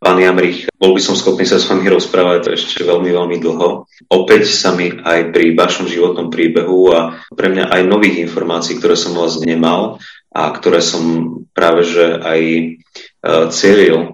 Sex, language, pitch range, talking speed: male, Slovak, 80-85 Hz, 175 wpm